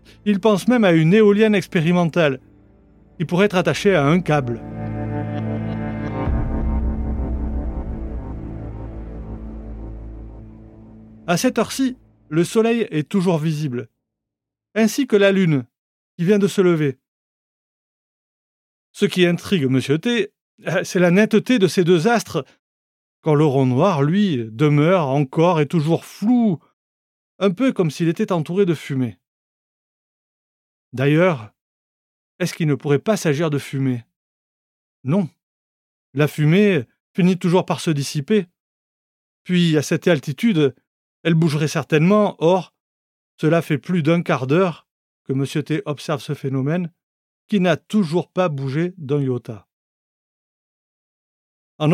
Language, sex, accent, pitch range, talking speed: French, male, French, 125-190 Hz, 120 wpm